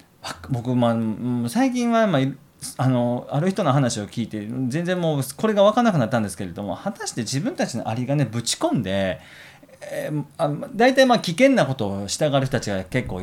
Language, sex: Japanese, male